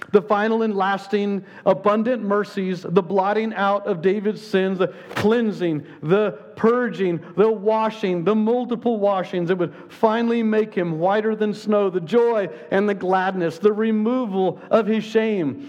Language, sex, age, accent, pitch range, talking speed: English, male, 50-69, American, 170-220 Hz, 150 wpm